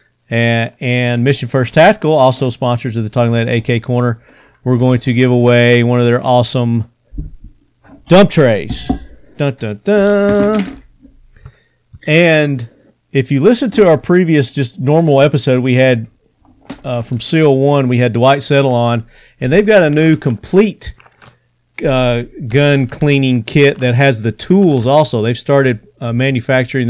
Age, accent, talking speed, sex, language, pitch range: 40-59, American, 140 wpm, male, English, 120-140 Hz